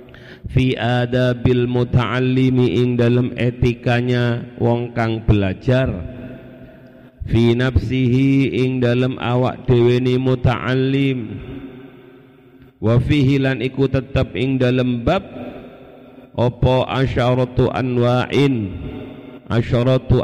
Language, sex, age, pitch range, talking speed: Indonesian, male, 50-69, 115-130 Hz, 80 wpm